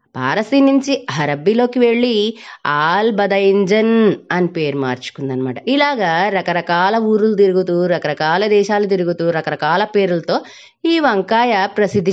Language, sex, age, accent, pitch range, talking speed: Telugu, female, 20-39, native, 180-230 Hz, 100 wpm